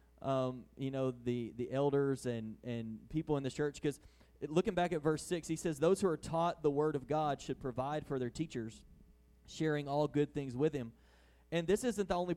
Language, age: English, 20-39